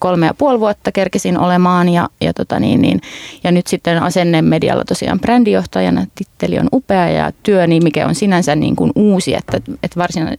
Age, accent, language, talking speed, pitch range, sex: 30-49, native, Finnish, 150 wpm, 160-185 Hz, female